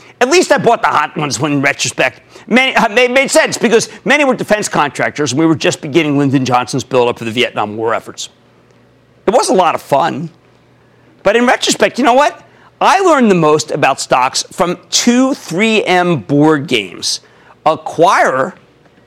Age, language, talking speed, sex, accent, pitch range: 50-69, English, 180 wpm, male, American, 130-200 Hz